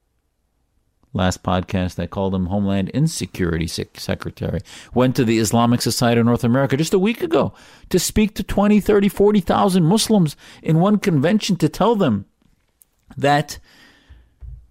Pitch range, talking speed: 95-135 Hz, 140 wpm